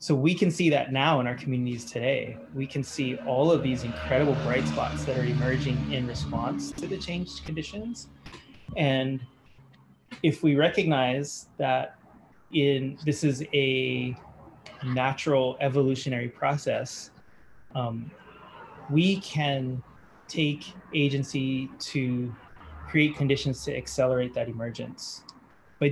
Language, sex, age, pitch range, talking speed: English, male, 20-39, 125-150 Hz, 125 wpm